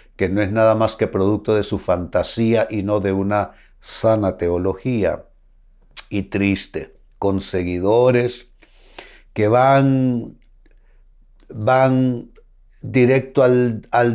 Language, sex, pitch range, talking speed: Spanish, male, 95-125 Hz, 110 wpm